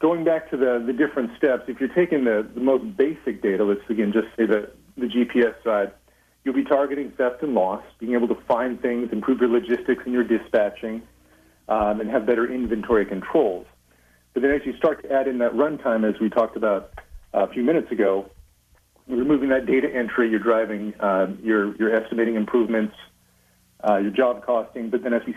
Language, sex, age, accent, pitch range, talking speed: English, male, 40-59, American, 105-130 Hz, 200 wpm